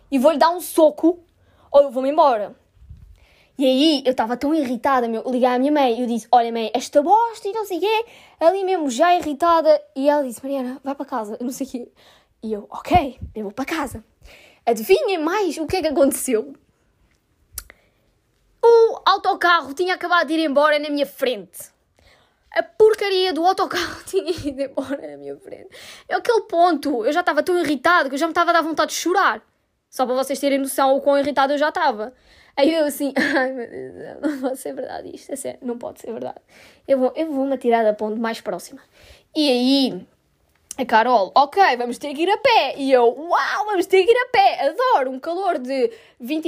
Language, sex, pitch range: Portuguese, female, 255-345 Hz